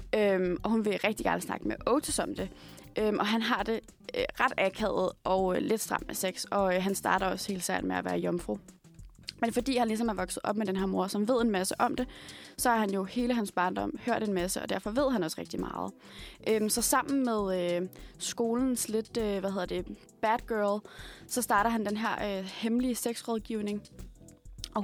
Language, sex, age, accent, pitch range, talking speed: Danish, female, 20-39, native, 185-235 Hz, 220 wpm